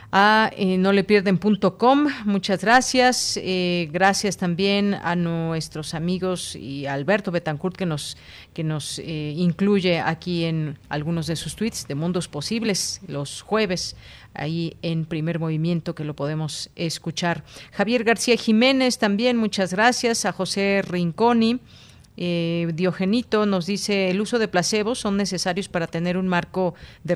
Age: 40-59